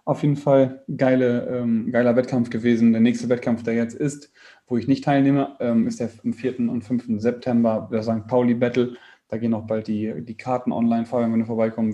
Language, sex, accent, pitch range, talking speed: German, male, German, 115-140 Hz, 195 wpm